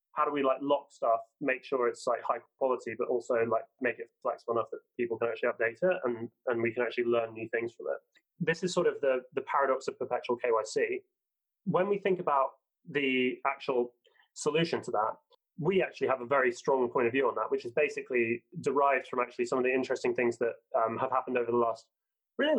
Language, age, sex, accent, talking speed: English, 20-39, male, British, 225 wpm